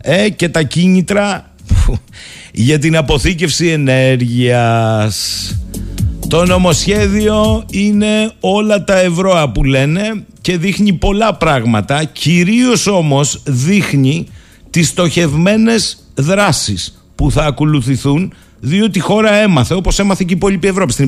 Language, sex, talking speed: Greek, male, 115 wpm